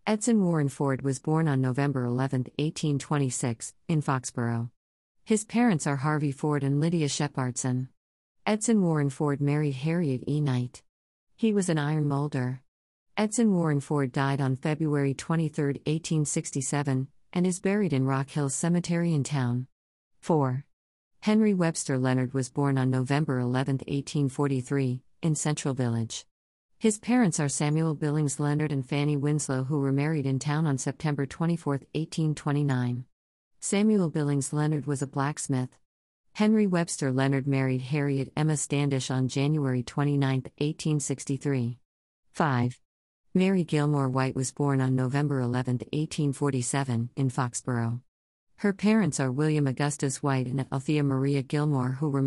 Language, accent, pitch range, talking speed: English, American, 130-155 Hz, 140 wpm